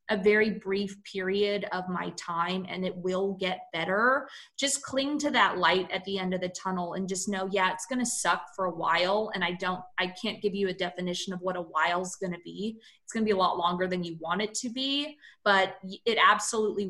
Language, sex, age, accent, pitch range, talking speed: English, female, 20-39, American, 185-210 Hz, 235 wpm